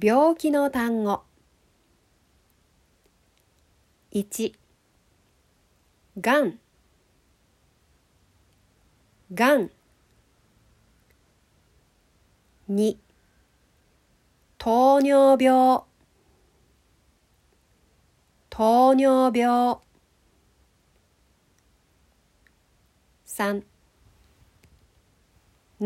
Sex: female